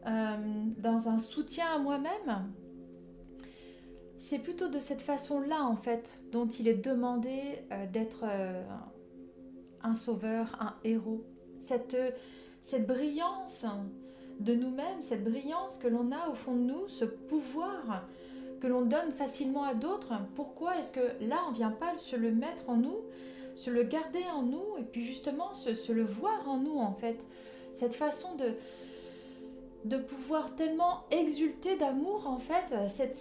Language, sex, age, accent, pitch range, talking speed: French, female, 30-49, French, 225-290 Hz, 160 wpm